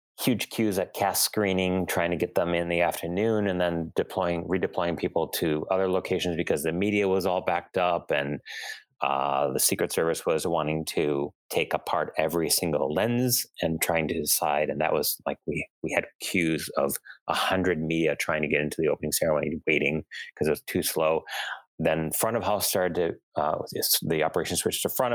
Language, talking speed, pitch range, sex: English, 195 wpm, 85-105 Hz, male